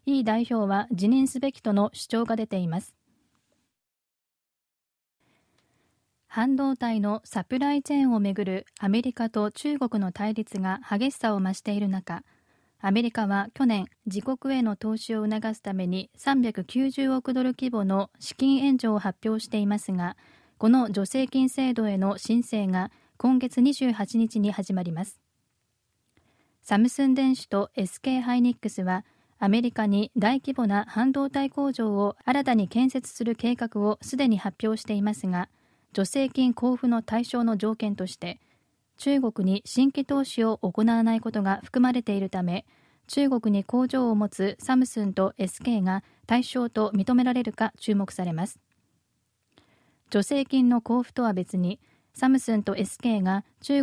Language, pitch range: Japanese, 200-255 Hz